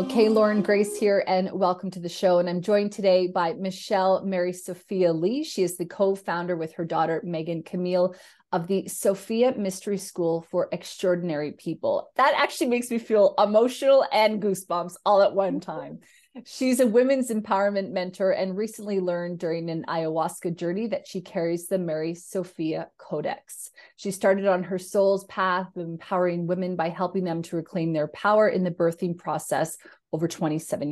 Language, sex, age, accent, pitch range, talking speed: English, female, 30-49, American, 170-205 Hz, 170 wpm